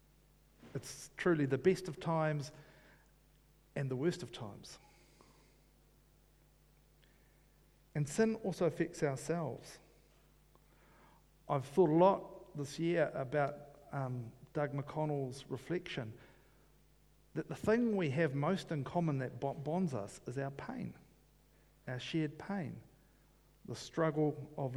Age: 50-69